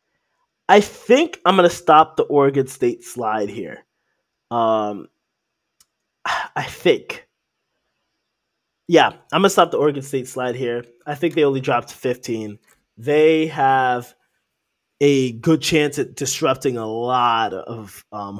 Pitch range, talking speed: 120-150 Hz, 135 wpm